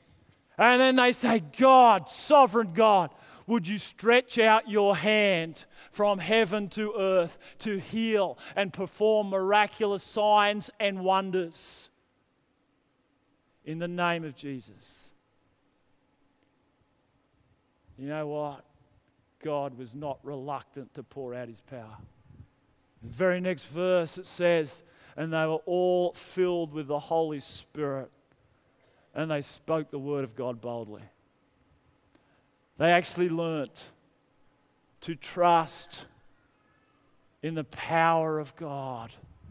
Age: 40-59